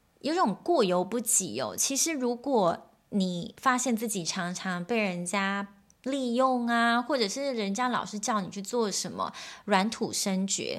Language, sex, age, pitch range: Chinese, female, 20-39, 185-240 Hz